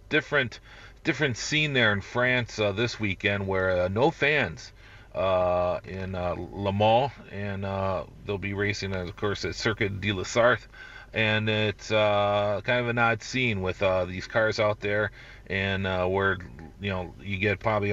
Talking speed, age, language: 175 wpm, 40-59, English